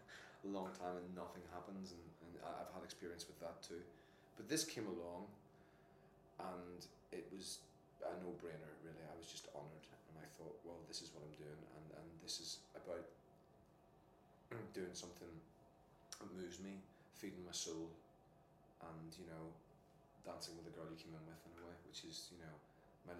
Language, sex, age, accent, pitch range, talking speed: English, male, 30-49, British, 80-90 Hz, 180 wpm